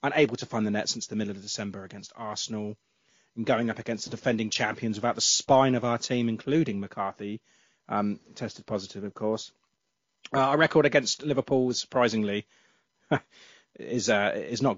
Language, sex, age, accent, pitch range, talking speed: English, male, 30-49, British, 105-125 Hz, 170 wpm